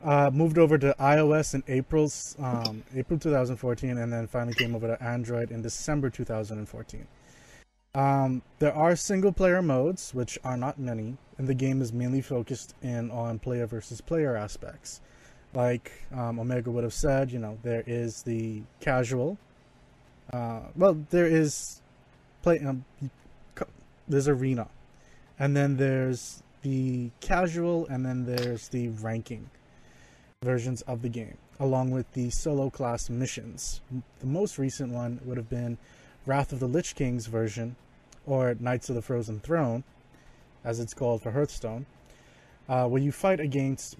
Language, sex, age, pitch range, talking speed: English, male, 20-39, 120-140 Hz, 150 wpm